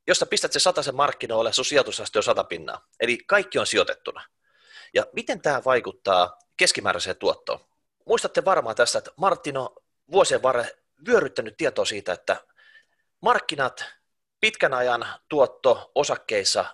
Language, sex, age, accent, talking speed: Finnish, male, 30-49, native, 135 wpm